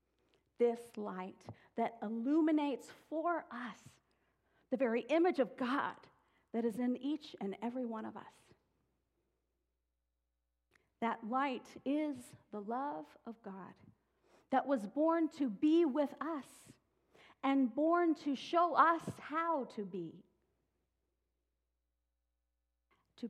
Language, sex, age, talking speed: English, female, 40-59, 110 wpm